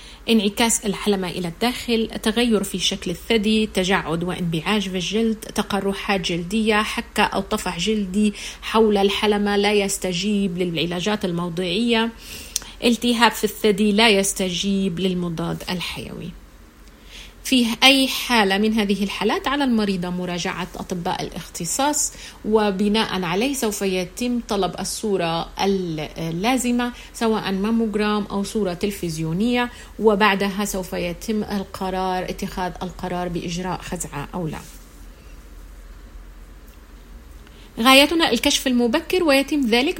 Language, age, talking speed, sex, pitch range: Arabic, 30-49, 100 wpm, female, 185-230 Hz